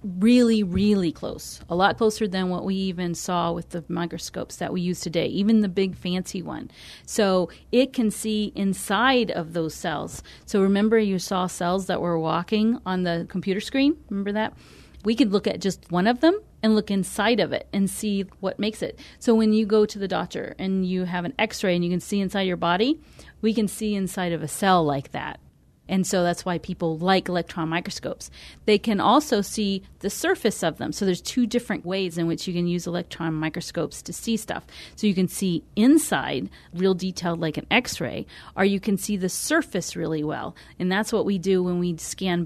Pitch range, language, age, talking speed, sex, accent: 175-215 Hz, English, 40-59, 210 wpm, female, American